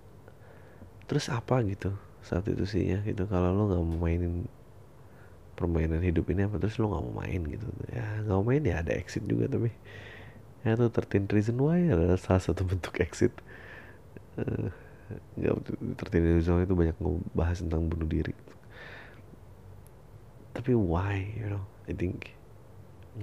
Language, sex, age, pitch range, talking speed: Indonesian, male, 30-49, 90-110 Hz, 150 wpm